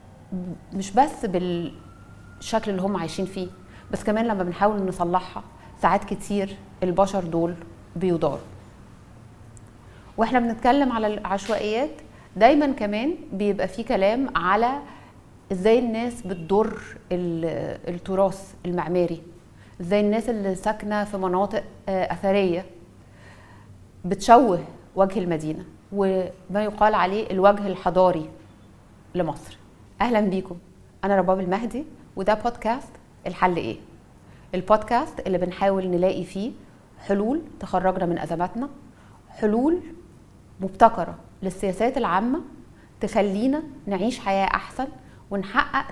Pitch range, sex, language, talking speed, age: 170-215 Hz, female, Arabic, 100 wpm, 30-49